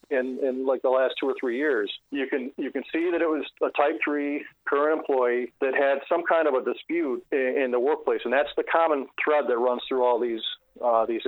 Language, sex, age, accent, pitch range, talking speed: English, male, 40-59, American, 120-145 Hz, 240 wpm